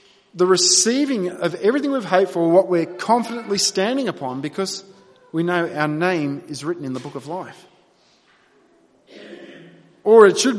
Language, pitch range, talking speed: English, 165-210 Hz, 155 wpm